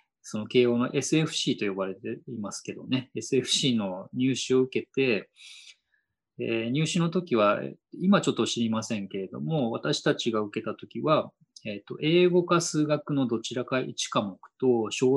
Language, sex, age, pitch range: Japanese, male, 20-39, 115-150 Hz